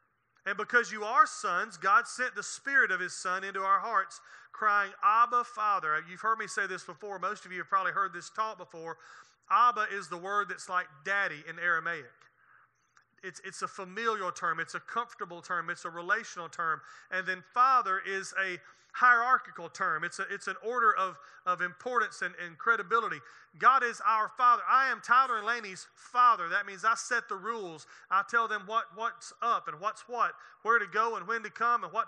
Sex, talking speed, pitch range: male, 200 wpm, 190-245 Hz